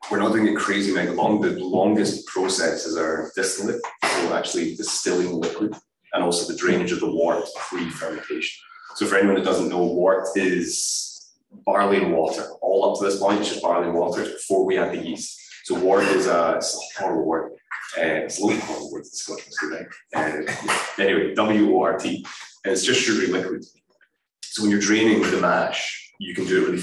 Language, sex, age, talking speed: English, male, 20-39, 200 wpm